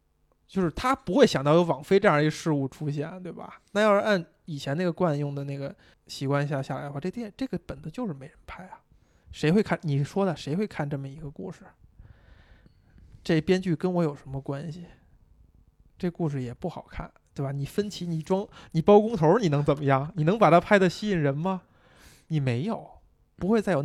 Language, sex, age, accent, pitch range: Chinese, male, 20-39, native, 140-185 Hz